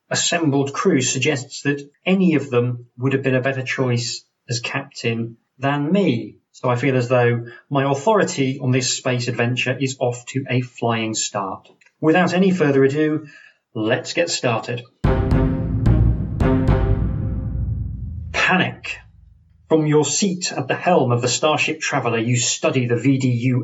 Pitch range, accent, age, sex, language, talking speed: 120-155 Hz, British, 40-59, male, English, 140 wpm